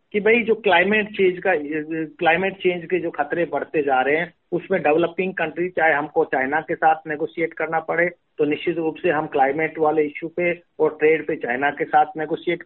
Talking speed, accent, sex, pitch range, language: 200 wpm, native, male, 155-195 Hz, Hindi